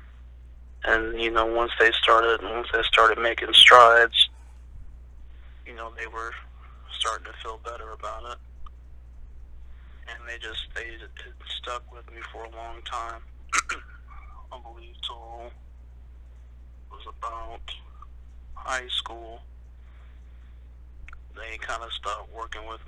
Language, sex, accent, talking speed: English, male, American, 125 wpm